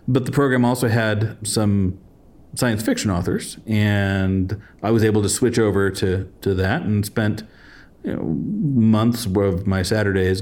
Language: English